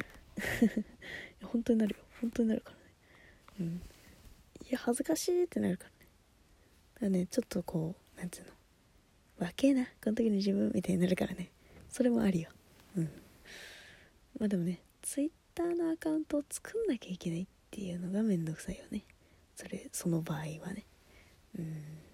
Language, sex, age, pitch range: Japanese, female, 20-39, 170-235 Hz